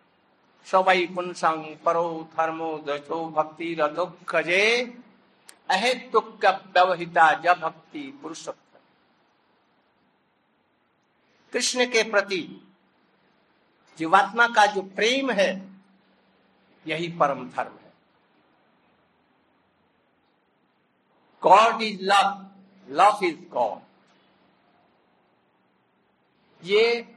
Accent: native